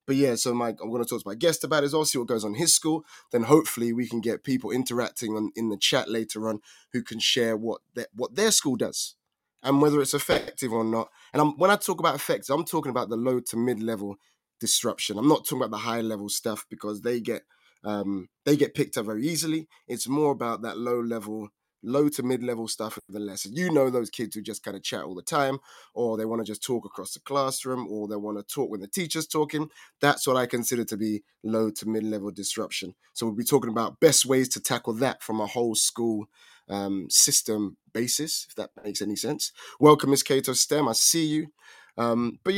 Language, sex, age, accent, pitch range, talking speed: English, male, 20-39, British, 110-150 Hz, 235 wpm